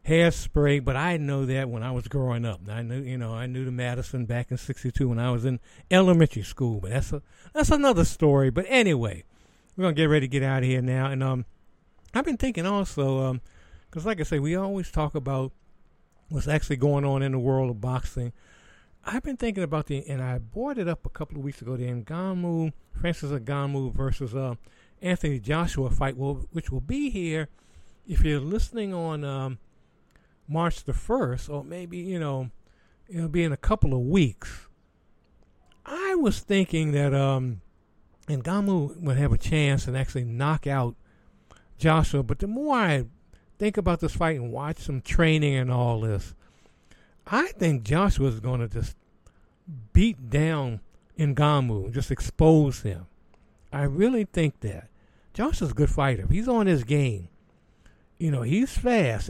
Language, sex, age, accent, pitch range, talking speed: English, male, 60-79, American, 120-160 Hz, 175 wpm